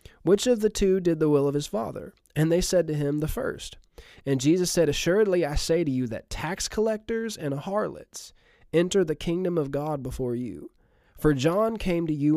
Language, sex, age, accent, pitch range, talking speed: English, male, 20-39, American, 135-195 Hz, 205 wpm